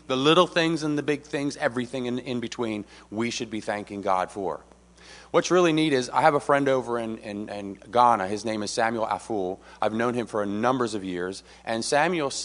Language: English